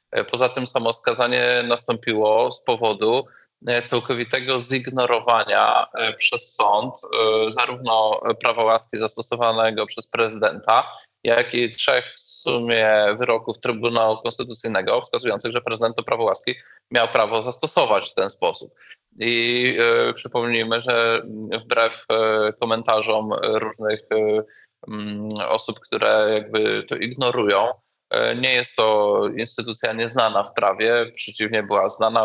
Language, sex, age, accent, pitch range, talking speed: Polish, male, 20-39, native, 110-120 Hz, 105 wpm